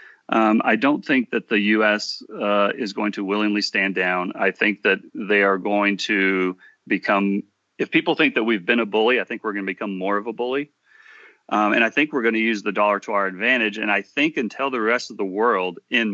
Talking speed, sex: 235 wpm, male